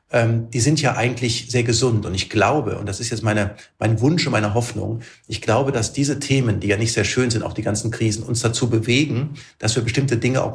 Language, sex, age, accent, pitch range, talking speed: German, male, 40-59, German, 110-125 Hz, 235 wpm